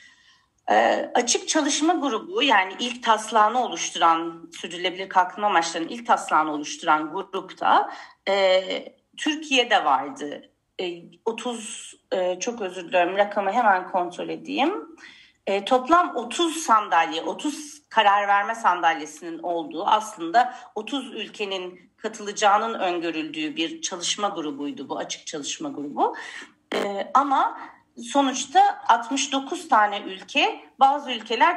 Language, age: Turkish, 40-59